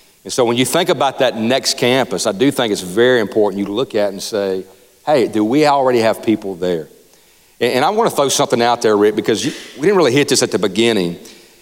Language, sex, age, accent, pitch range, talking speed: English, male, 40-59, American, 110-145 Hz, 230 wpm